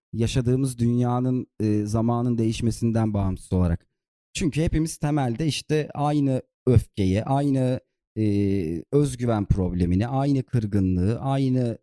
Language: Turkish